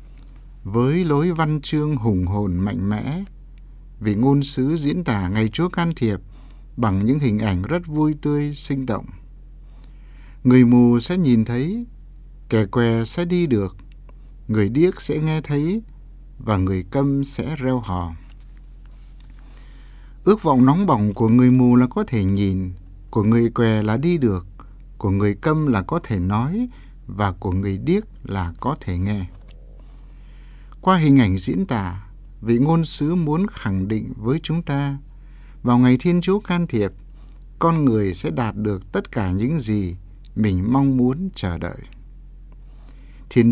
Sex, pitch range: male, 105-145 Hz